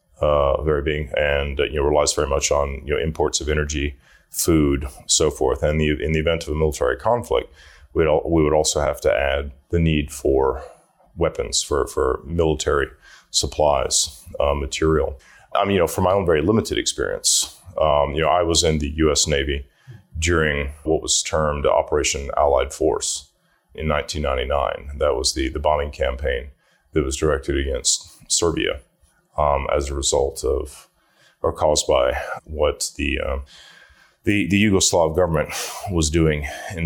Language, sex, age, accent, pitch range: Chinese, male, 30-49, American, 75-105 Hz